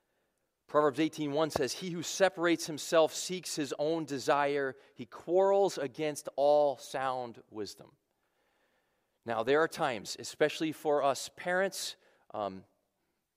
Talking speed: 115 wpm